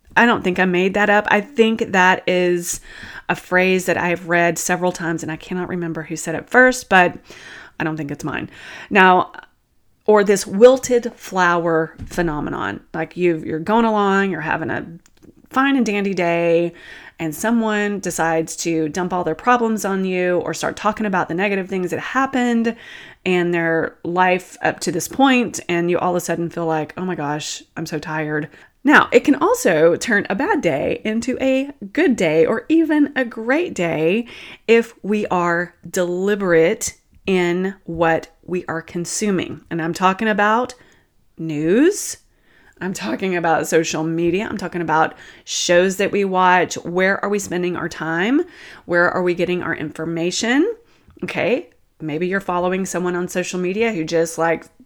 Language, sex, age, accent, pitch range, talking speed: English, female, 30-49, American, 170-210 Hz, 170 wpm